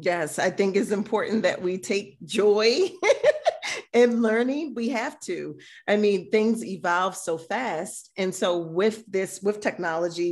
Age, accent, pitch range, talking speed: 40-59, American, 175-205 Hz, 150 wpm